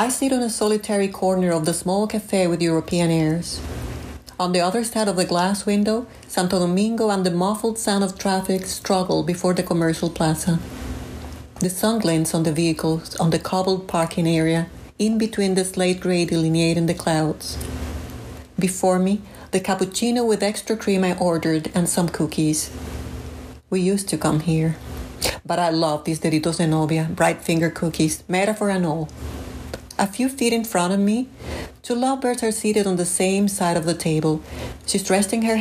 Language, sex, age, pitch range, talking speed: English, female, 40-59, 160-200 Hz, 175 wpm